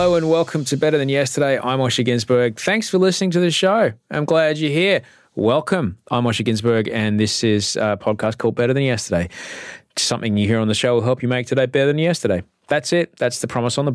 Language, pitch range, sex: English, 95-130 Hz, male